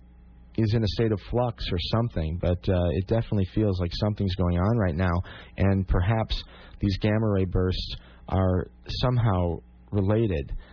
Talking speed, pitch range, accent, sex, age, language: 150 wpm, 85-105 Hz, American, male, 30-49, English